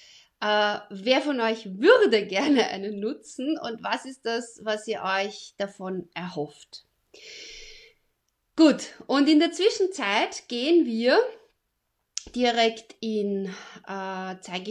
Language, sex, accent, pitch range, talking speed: German, female, German, 195-290 Hz, 115 wpm